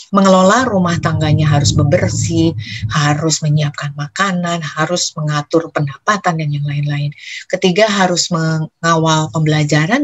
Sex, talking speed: female, 110 wpm